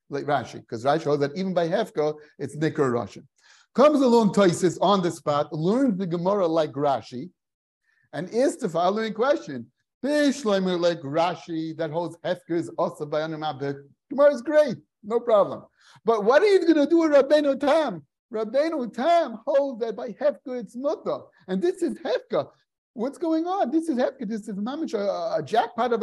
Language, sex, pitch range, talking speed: English, male, 155-245 Hz, 180 wpm